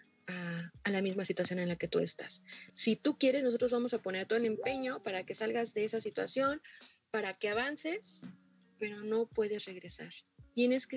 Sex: female